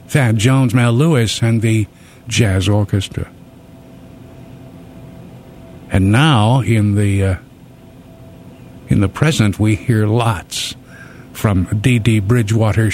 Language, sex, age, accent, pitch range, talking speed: English, male, 60-79, American, 105-130 Hz, 105 wpm